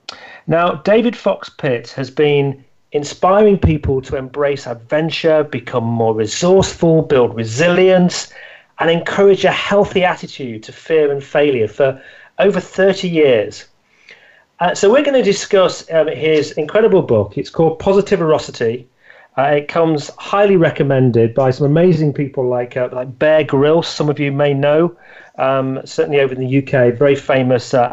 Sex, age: male, 40-59